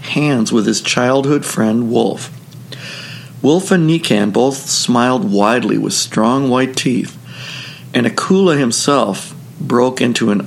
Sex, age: male, 50-69